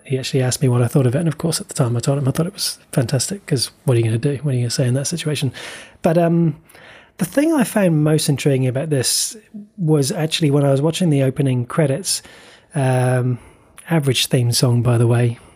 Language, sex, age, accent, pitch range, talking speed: English, male, 30-49, British, 130-165 Hz, 250 wpm